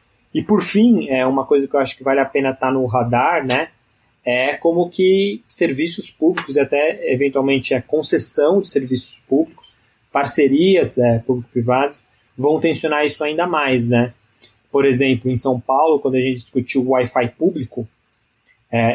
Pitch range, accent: 125-150 Hz, Brazilian